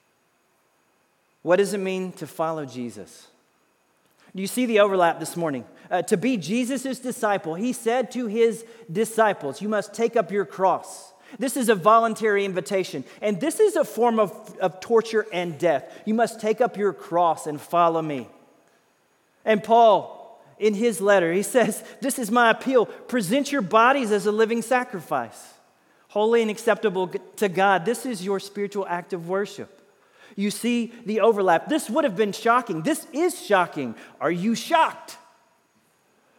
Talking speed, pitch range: 165 wpm, 165-230 Hz